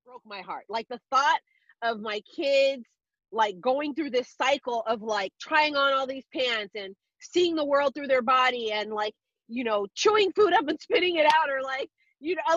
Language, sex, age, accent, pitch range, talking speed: English, female, 30-49, American, 210-280 Hz, 205 wpm